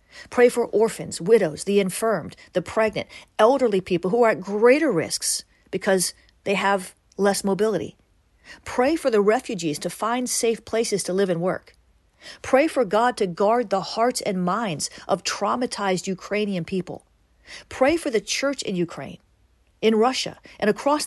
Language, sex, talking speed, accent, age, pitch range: English, female, 155 wpm, American, 40-59, 180-240 Hz